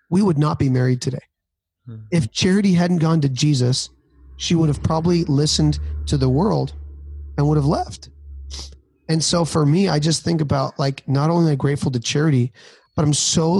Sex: male